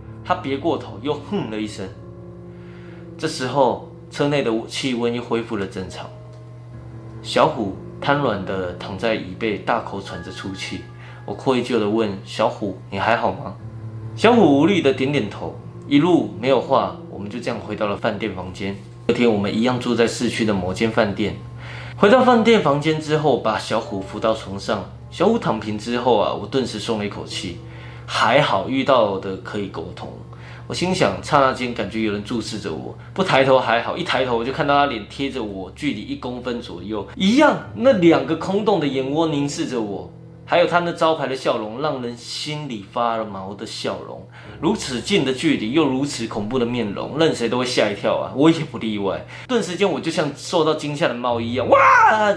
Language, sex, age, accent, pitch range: Chinese, male, 20-39, native, 110-145 Hz